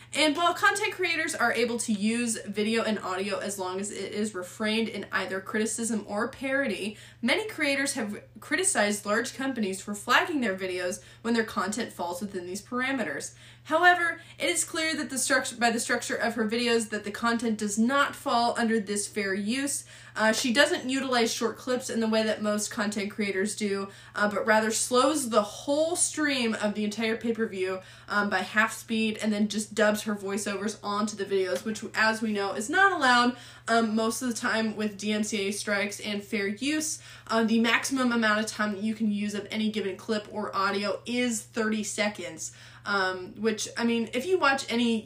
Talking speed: 195 wpm